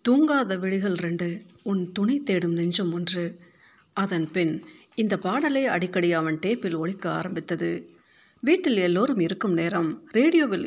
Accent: native